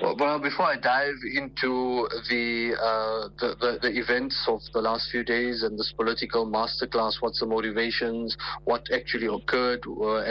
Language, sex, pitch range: English, male, 115-130 Hz